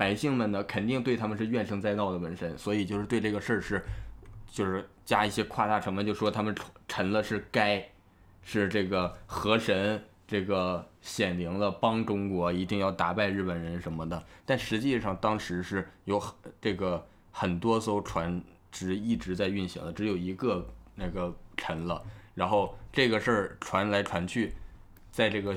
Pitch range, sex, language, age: 90-110 Hz, male, Chinese, 20-39